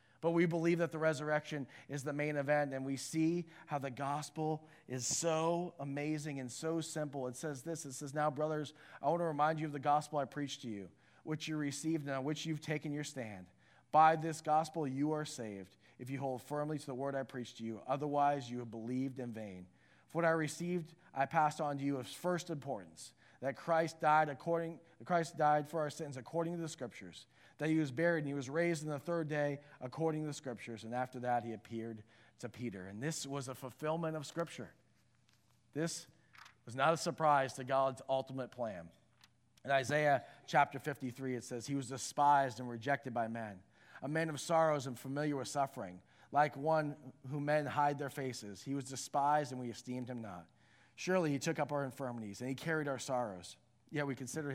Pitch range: 125-155 Hz